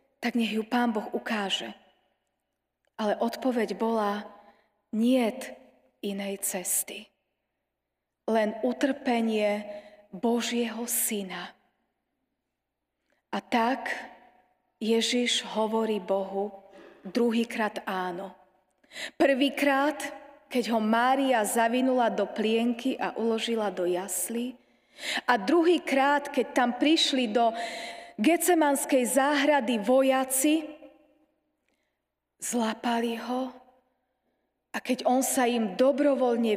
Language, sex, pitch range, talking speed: Slovak, female, 215-265 Hz, 85 wpm